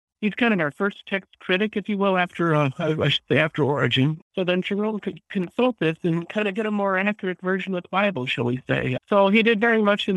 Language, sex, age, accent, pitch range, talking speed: English, male, 60-79, American, 135-190 Hz, 255 wpm